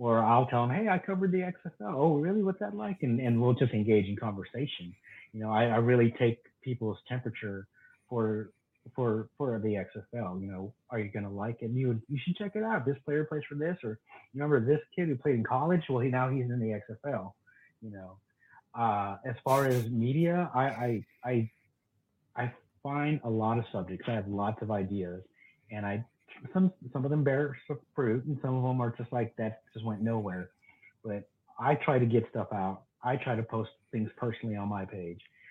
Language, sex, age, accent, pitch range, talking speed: English, male, 30-49, American, 105-125 Hz, 210 wpm